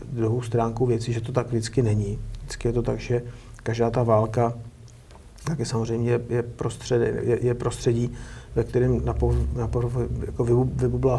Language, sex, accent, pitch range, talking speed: Czech, male, native, 115-120 Hz, 140 wpm